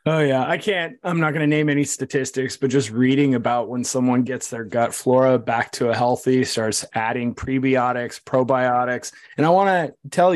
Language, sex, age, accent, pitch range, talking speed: English, male, 20-39, American, 120-145 Hz, 195 wpm